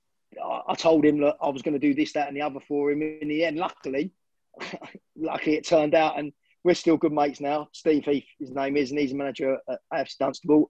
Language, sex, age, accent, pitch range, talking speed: English, male, 20-39, British, 140-165 Hz, 235 wpm